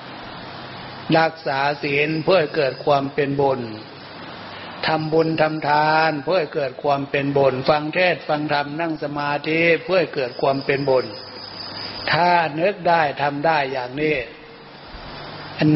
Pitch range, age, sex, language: 135-165 Hz, 60-79, male, Thai